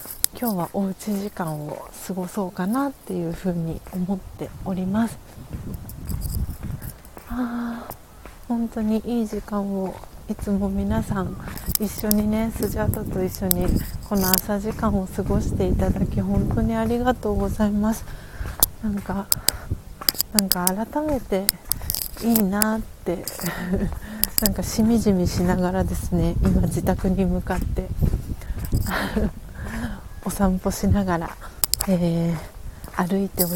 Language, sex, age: Japanese, female, 40-59